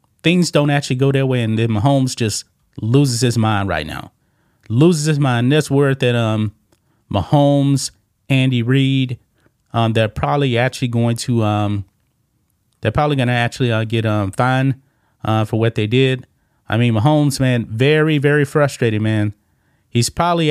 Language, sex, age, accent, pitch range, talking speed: English, male, 30-49, American, 110-130 Hz, 165 wpm